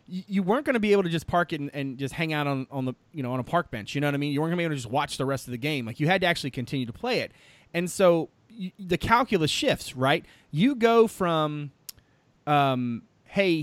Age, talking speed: 30-49, 280 wpm